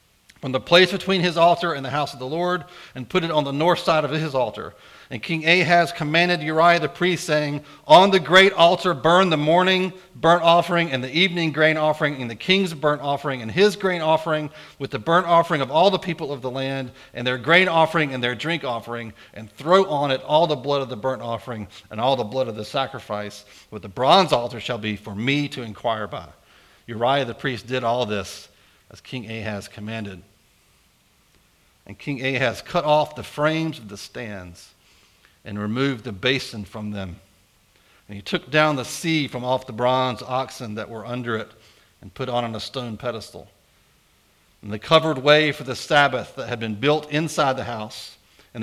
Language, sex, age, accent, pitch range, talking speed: English, male, 40-59, American, 110-155 Hz, 200 wpm